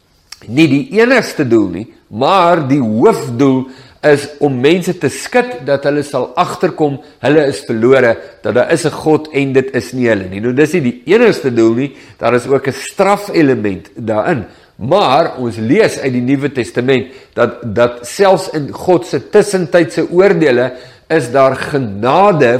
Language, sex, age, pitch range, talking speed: English, male, 50-69, 120-160 Hz, 160 wpm